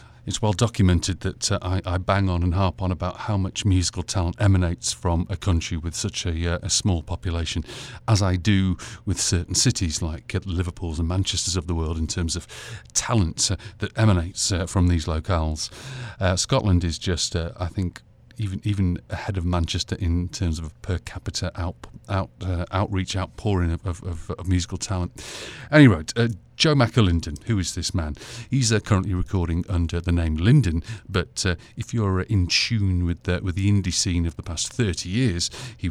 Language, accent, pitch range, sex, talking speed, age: English, British, 90-110 Hz, male, 190 wpm, 40-59